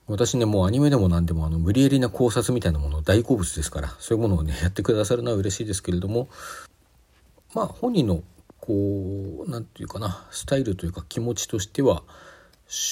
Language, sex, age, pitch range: Japanese, male, 40-59, 85-110 Hz